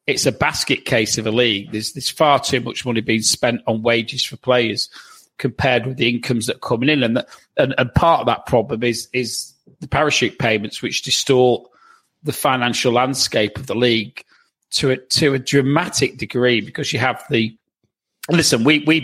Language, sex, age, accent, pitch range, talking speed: English, male, 40-59, British, 110-130 Hz, 200 wpm